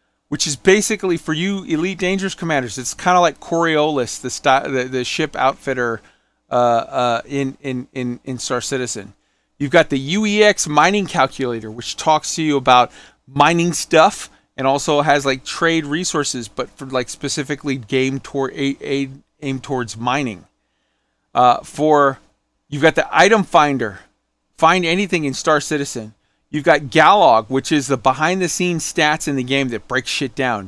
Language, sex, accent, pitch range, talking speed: English, male, American, 130-165 Hz, 165 wpm